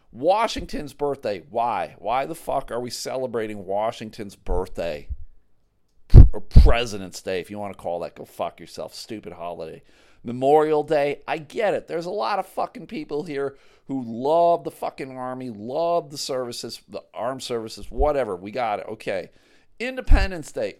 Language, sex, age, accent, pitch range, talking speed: English, male, 40-59, American, 105-155 Hz, 160 wpm